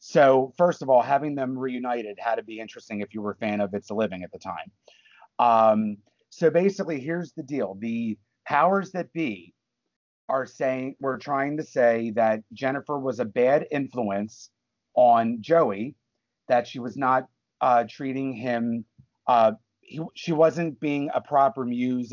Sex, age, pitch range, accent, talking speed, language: male, 30-49, 115-140 Hz, American, 165 wpm, English